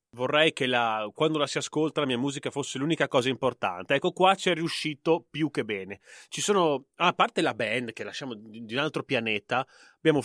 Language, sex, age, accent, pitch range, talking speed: Italian, male, 30-49, native, 125-175 Hz, 205 wpm